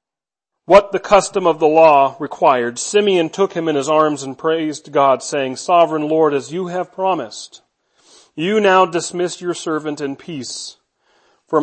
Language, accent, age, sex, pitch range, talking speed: English, American, 40-59, male, 155-200 Hz, 160 wpm